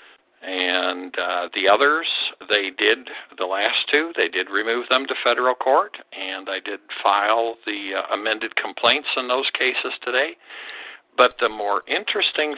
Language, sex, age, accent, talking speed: English, male, 60-79, American, 155 wpm